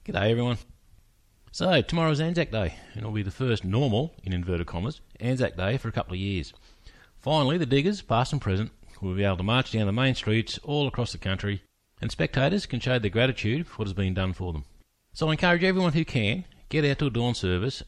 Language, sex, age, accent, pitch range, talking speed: English, male, 40-59, Australian, 100-135 Hz, 220 wpm